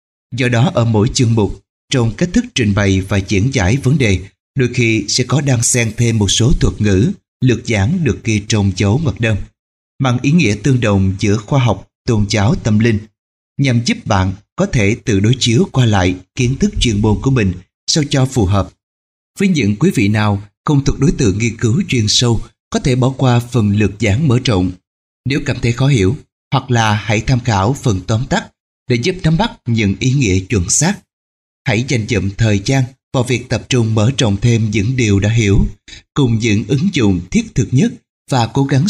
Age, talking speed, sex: 20-39, 210 wpm, male